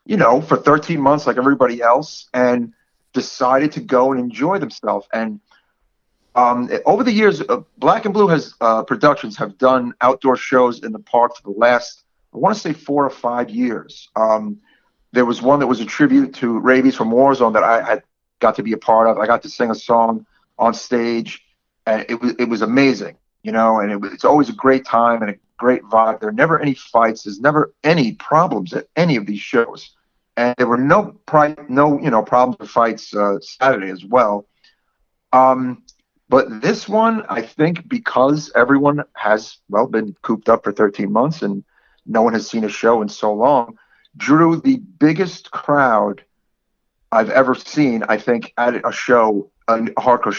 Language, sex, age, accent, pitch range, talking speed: English, male, 40-59, American, 110-140 Hz, 190 wpm